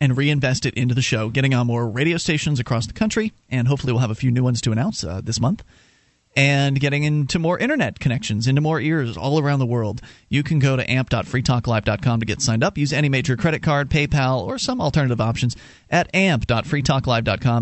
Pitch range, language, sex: 115-155 Hz, English, male